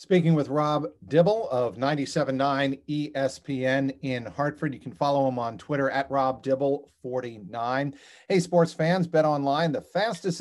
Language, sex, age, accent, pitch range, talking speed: English, male, 50-69, American, 130-160 Hz, 150 wpm